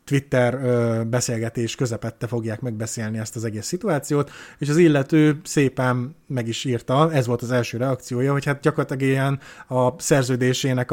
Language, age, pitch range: Hungarian, 30-49, 120-140 Hz